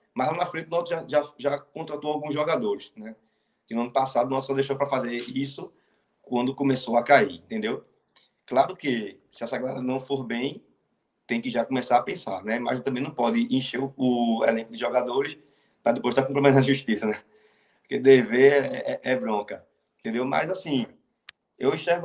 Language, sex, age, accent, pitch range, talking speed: Portuguese, male, 20-39, Brazilian, 120-145 Hz, 200 wpm